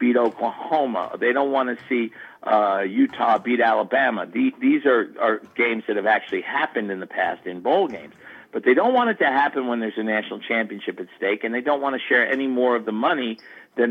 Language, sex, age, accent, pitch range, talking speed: English, male, 50-69, American, 110-140 Hz, 225 wpm